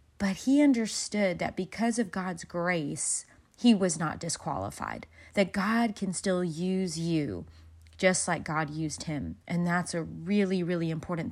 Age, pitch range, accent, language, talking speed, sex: 30-49, 170-220 Hz, American, English, 155 wpm, female